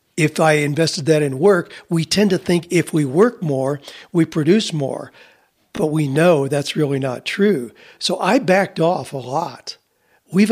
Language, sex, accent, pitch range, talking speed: English, male, American, 145-180 Hz, 175 wpm